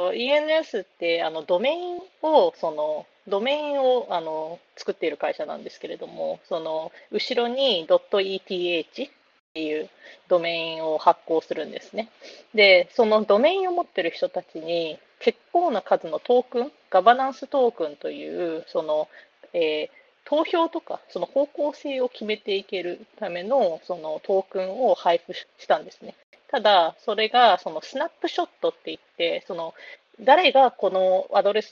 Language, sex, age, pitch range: Japanese, female, 30-49, 180-290 Hz